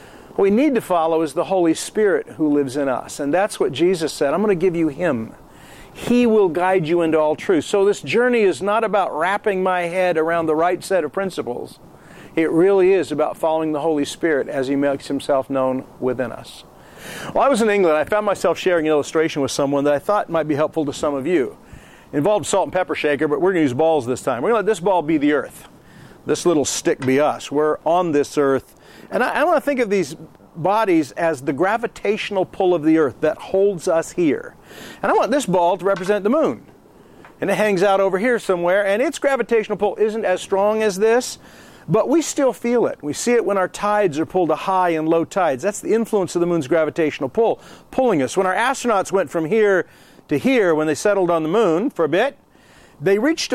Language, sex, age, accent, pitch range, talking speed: English, male, 50-69, American, 155-215 Hz, 230 wpm